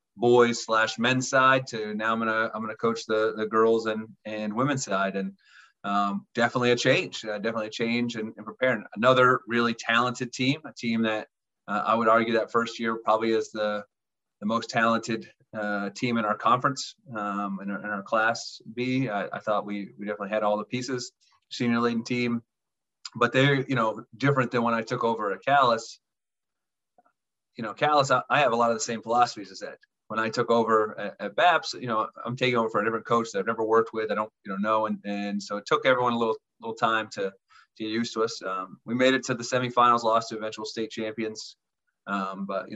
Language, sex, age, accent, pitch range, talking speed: English, male, 30-49, American, 110-125 Hz, 220 wpm